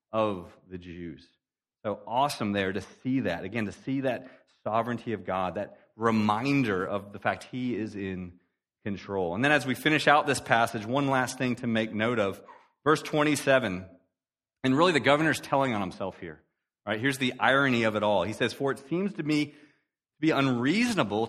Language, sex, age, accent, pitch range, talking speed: English, male, 30-49, American, 115-165 Hz, 190 wpm